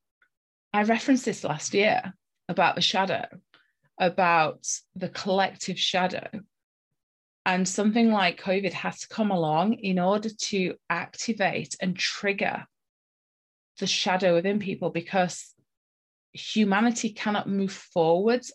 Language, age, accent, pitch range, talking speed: English, 30-49, British, 175-220 Hz, 115 wpm